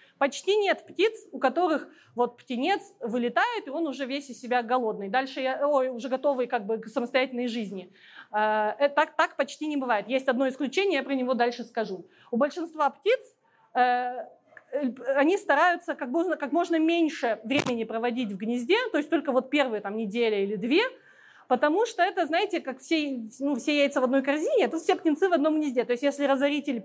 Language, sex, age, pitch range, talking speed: Russian, female, 30-49, 255-335 Hz, 190 wpm